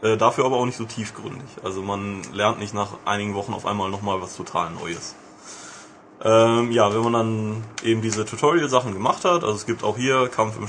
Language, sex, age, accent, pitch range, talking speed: German, male, 20-39, German, 105-125 Hz, 200 wpm